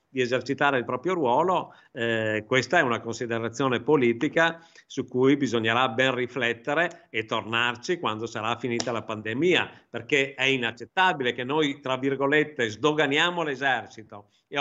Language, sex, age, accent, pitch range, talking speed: Italian, male, 50-69, native, 120-150 Hz, 135 wpm